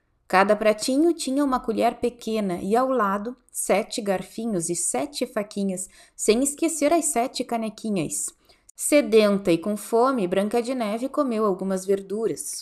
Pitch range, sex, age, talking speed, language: 195-255 Hz, female, 20-39, 140 wpm, Portuguese